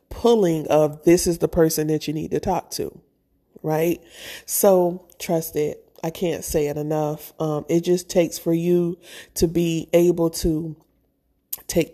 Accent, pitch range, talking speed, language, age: American, 155-185 Hz, 160 wpm, English, 40-59